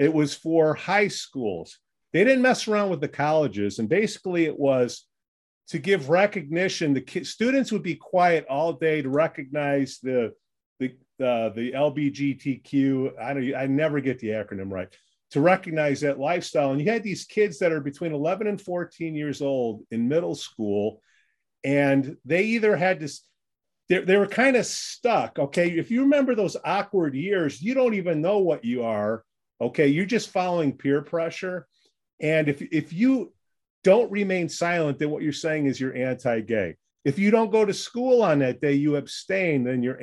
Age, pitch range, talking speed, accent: 40-59, 135-190 Hz, 180 wpm, American